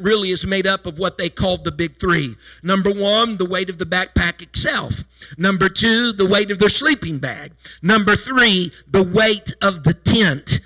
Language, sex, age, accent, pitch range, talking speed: English, male, 50-69, American, 175-220 Hz, 190 wpm